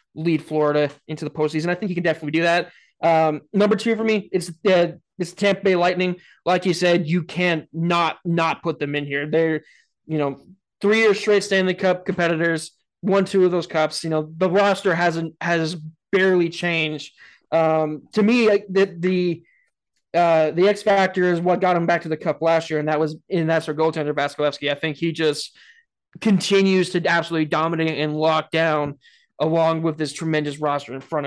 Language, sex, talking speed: English, male, 195 wpm